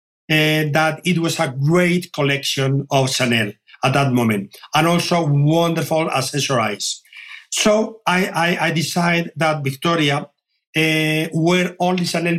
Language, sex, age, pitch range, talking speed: English, male, 50-69, 135-170 Hz, 130 wpm